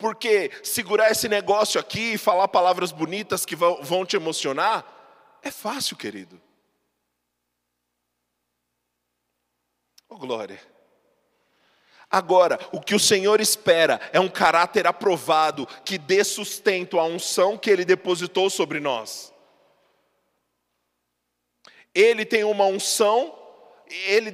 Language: Portuguese